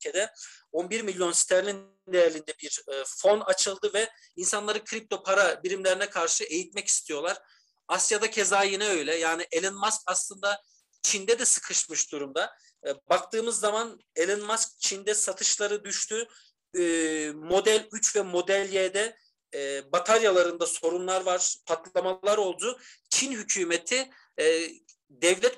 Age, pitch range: 50-69, 175-230 Hz